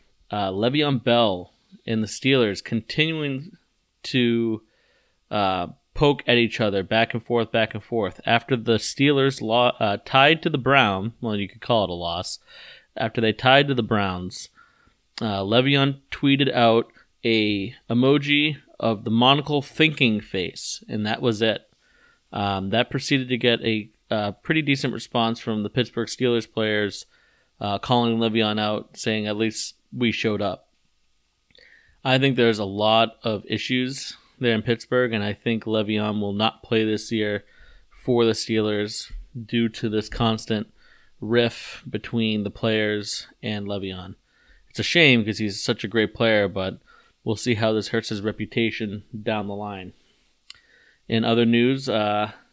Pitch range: 105-125 Hz